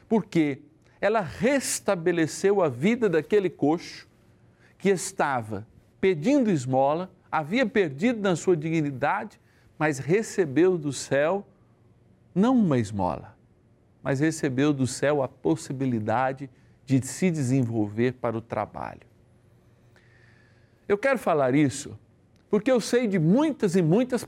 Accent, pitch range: Brazilian, 120-175 Hz